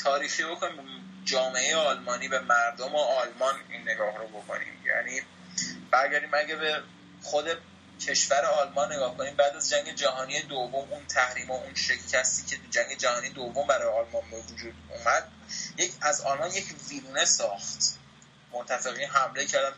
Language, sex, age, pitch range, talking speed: Persian, male, 20-39, 140-195 Hz, 150 wpm